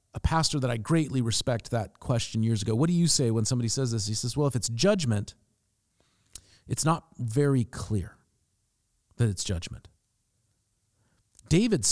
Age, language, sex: 40-59, English, male